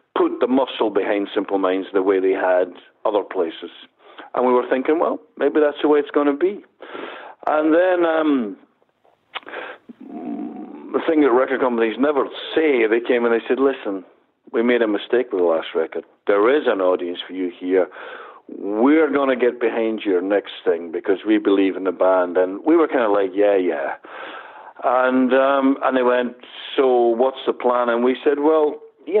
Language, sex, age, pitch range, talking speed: English, male, 60-79, 110-155 Hz, 185 wpm